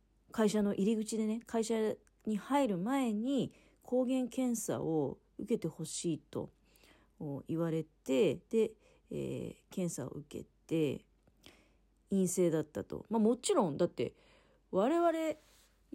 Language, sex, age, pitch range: Japanese, female, 40-59, 155-225 Hz